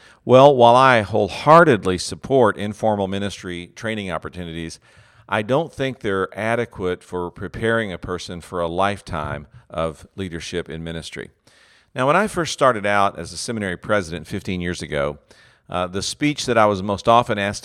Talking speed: 160 wpm